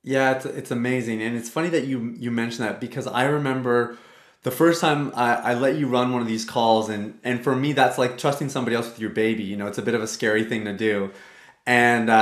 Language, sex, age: English, male, 30-49